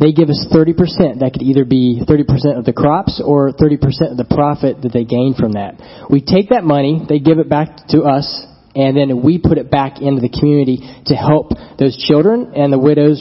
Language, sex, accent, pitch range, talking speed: English, male, American, 130-155 Hz, 220 wpm